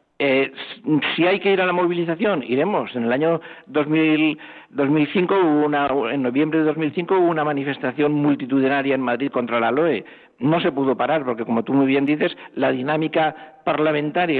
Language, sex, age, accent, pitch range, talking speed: Spanish, male, 60-79, Spanish, 125-155 Hz, 175 wpm